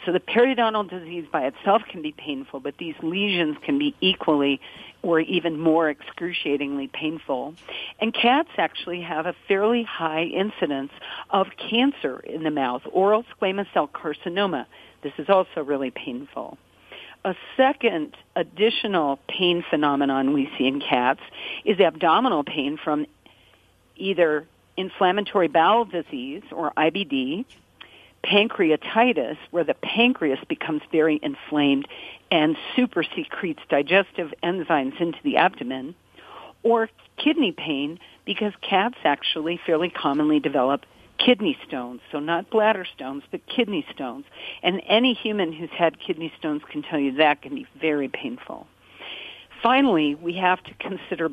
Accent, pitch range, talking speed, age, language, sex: American, 155-220 Hz, 135 wpm, 50-69, English, female